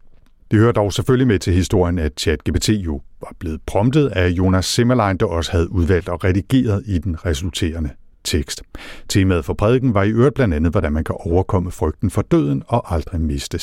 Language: Danish